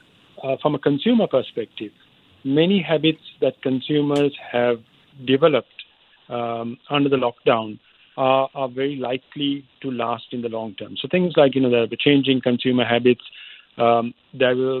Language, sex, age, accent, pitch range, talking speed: English, male, 50-69, Indian, 120-145 Hz, 140 wpm